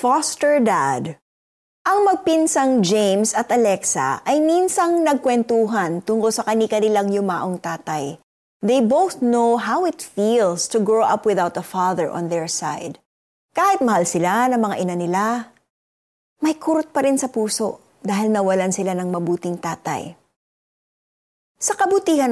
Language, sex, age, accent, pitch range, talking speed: Filipino, female, 20-39, native, 185-255 Hz, 135 wpm